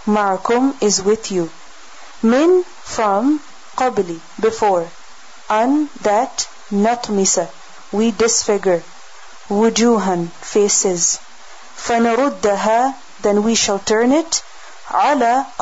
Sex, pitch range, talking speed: female, 200-245 Hz, 85 wpm